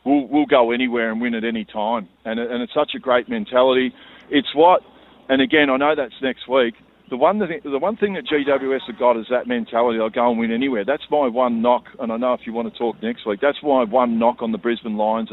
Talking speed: 255 wpm